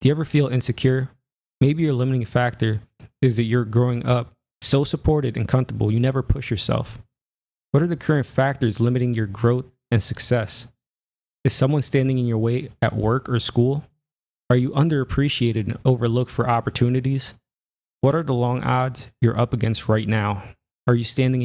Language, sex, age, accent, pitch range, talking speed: English, male, 20-39, American, 115-140 Hz, 175 wpm